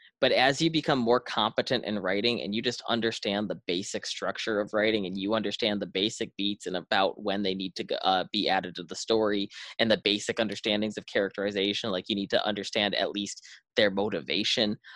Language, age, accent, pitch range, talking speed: English, 20-39, American, 100-125 Hz, 200 wpm